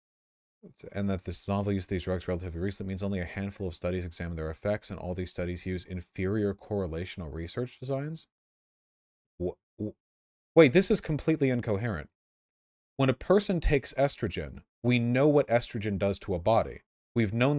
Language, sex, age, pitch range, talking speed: English, male, 30-49, 90-115 Hz, 165 wpm